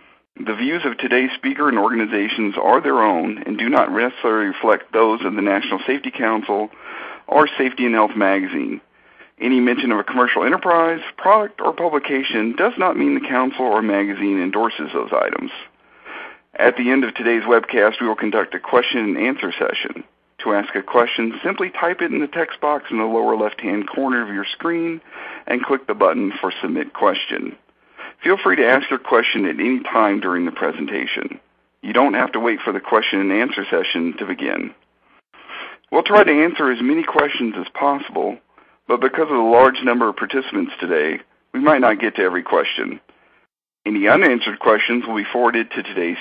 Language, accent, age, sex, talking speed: English, American, 50-69, male, 185 wpm